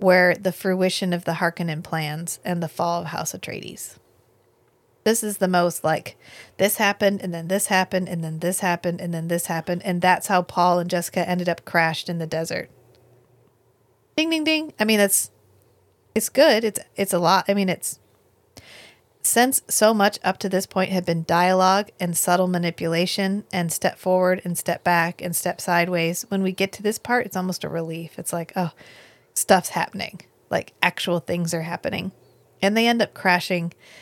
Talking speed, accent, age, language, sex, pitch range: 185 wpm, American, 30-49, English, female, 170-195 Hz